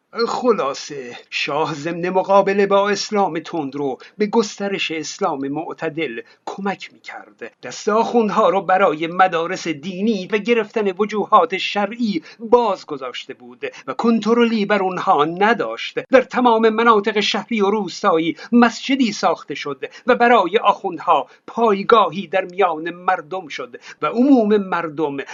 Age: 50-69